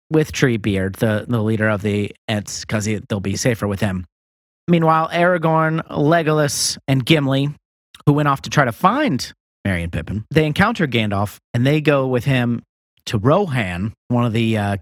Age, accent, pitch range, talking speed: 40-59, American, 105-155 Hz, 175 wpm